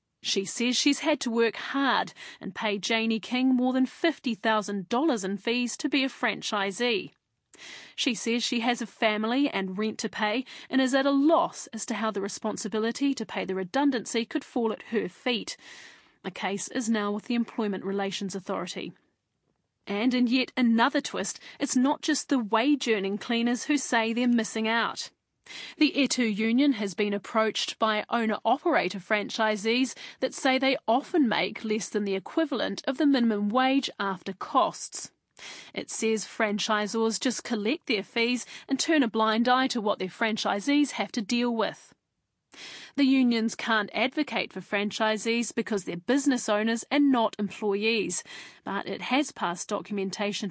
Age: 30-49